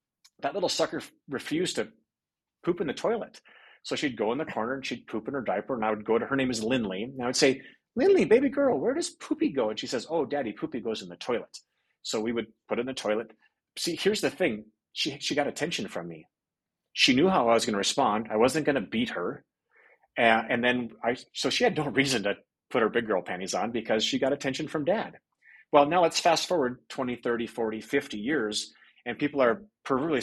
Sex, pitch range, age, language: male, 115-175 Hz, 30-49, English